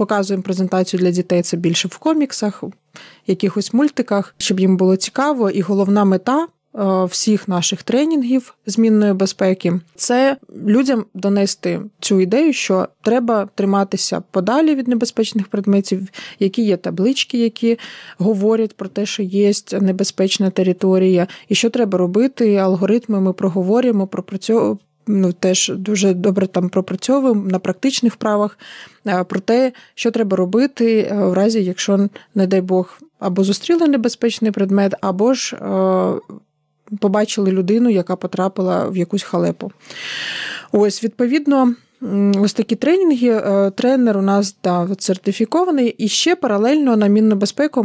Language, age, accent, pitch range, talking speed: Ukrainian, 20-39, native, 190-230 Hz, 135 wpm